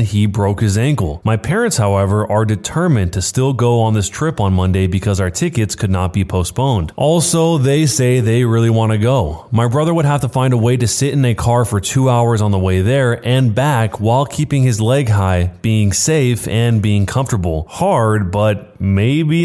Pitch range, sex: 100-125 Hz, male